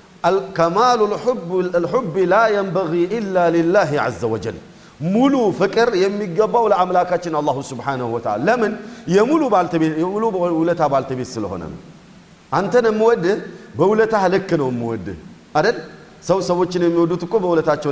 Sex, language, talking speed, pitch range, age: male, Amharic, 90 wpm, 155-200 Hz, 40-59